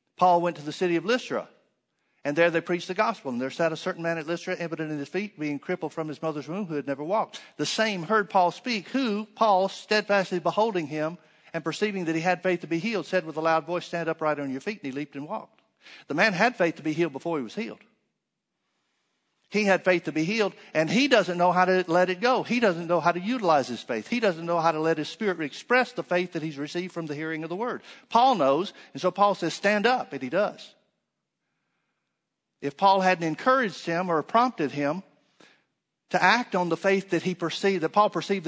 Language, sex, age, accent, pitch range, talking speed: English, male, 60-79, American, 160-200 Hz, 240 wpm